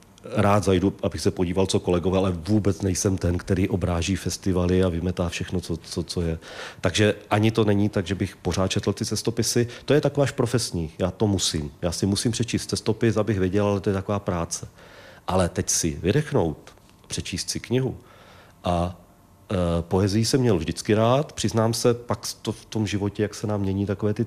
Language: Czech